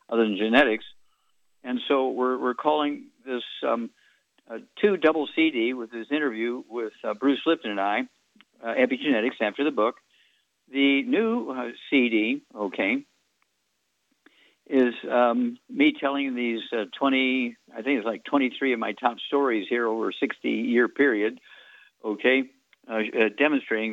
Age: 60-79